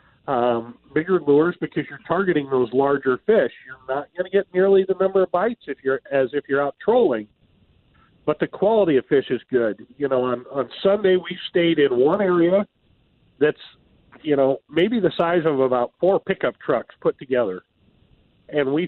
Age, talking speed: 40-59, 185 wpm